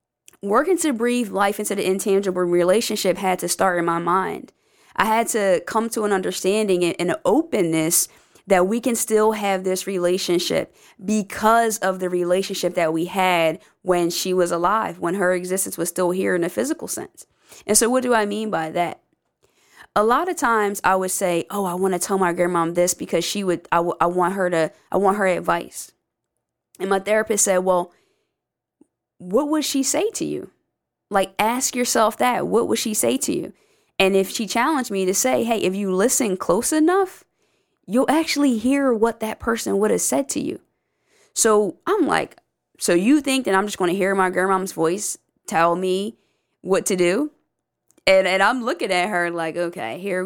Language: English